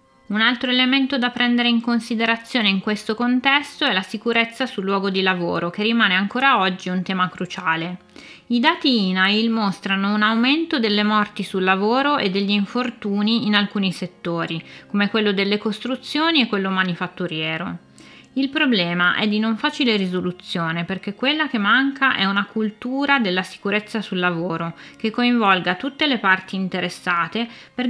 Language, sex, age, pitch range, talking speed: Italian, female, 20-39, 185-235 Hz, 155 wpm